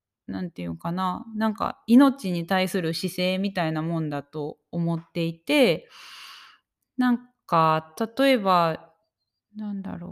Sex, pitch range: female, 165-240 Hz